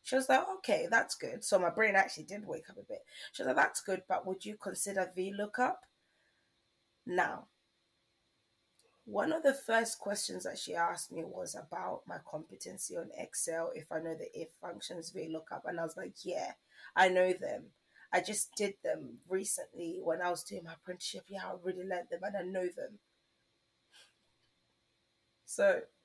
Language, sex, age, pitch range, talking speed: English, female, 20-39, 180-235 Hz, 175 wpm